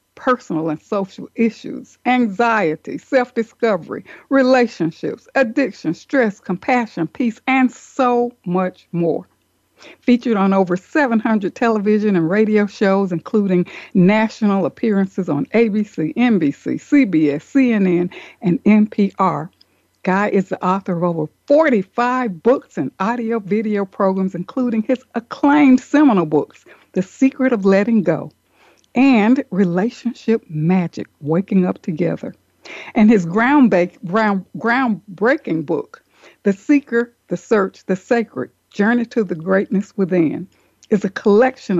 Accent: American